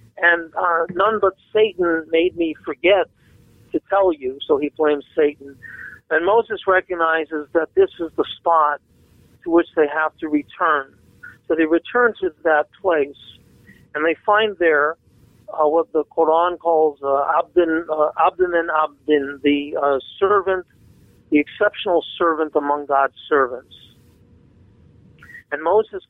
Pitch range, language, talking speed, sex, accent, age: 145-180 Hz, English, 140 wpm, male, American, 50-69